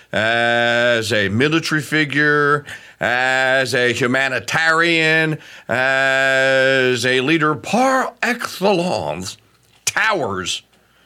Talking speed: 70 wpm